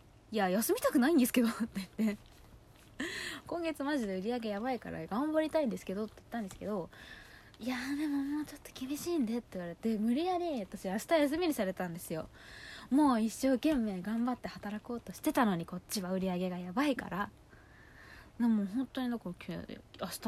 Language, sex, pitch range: Japanese, female, 175-260 Hz